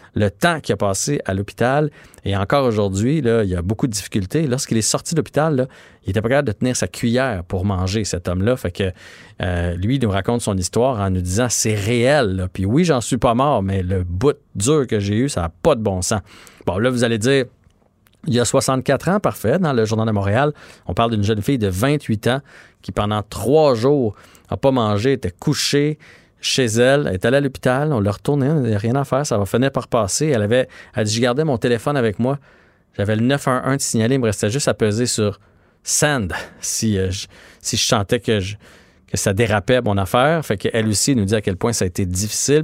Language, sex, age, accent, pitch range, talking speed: French, male, 30-49, Canadian, 100-135 Hz, 235 wpm